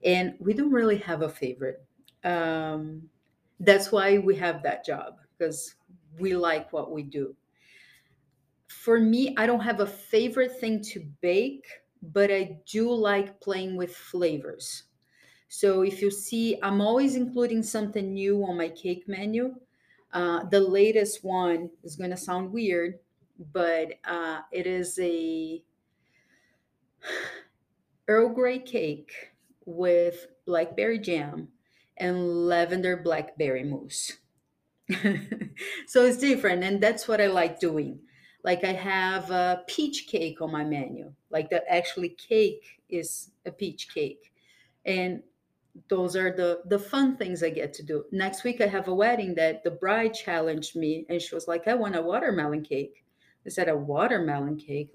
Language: English